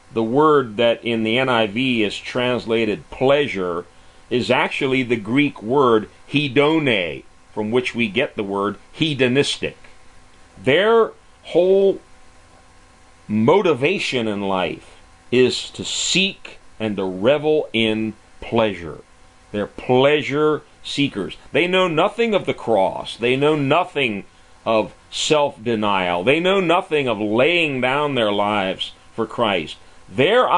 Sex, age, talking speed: male, 40-59, 120 wpm